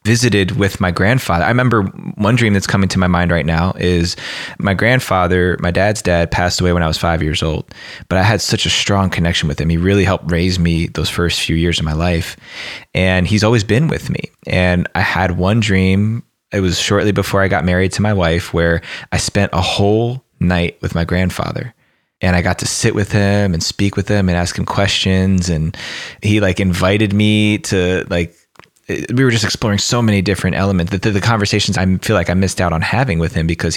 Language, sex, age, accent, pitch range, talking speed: English, male, 20-39, American, 90-105 Hz, 220 wpm